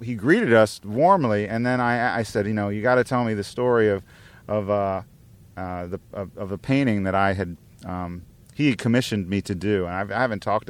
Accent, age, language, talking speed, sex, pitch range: American, 40-59, English, 230 wpm, male, 95-115 Hz